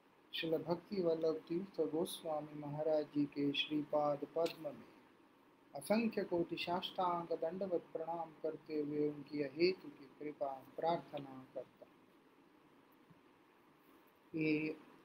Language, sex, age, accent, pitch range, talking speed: English, male, 30-49, Indian, 150-175 Hz, 90 wpm